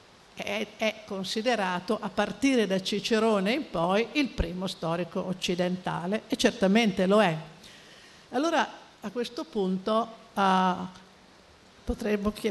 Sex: female